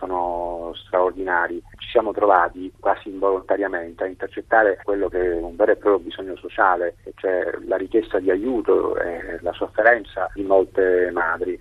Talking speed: 150 wpm